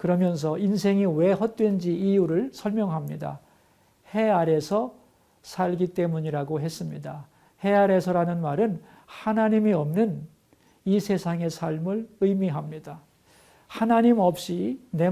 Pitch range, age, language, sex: 165-210 Hz, 50-69, Korean, male